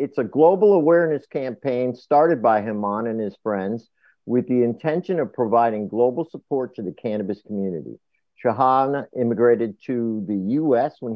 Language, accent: English, American